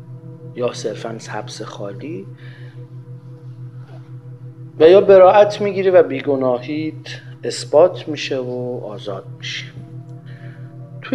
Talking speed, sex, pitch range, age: 85 wpm, male, 125-145 Hz, 50-69